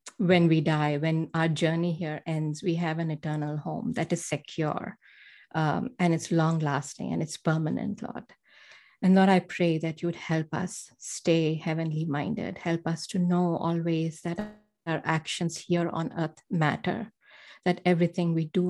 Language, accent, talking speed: English, Indian, 170 wpm